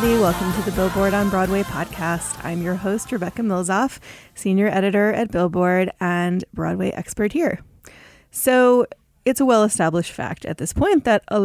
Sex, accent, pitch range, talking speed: female, American, 160-210 Hz, 155 wpm